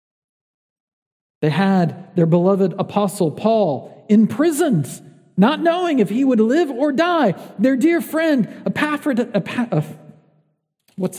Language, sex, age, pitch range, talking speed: English, male, 40-59, 155-210 Hz, 115 wpm